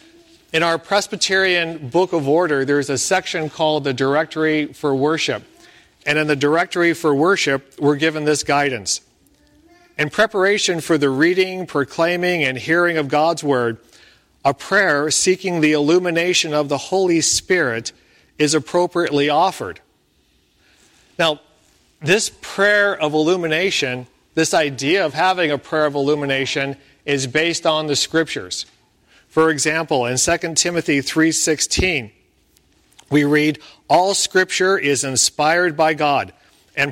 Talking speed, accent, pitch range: 130 wpm, American, 140-175 Hz